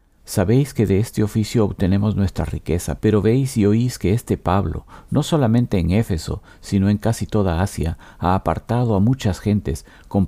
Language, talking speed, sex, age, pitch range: Spanish, 175 wpm, male, 50-69, 85-110 Hz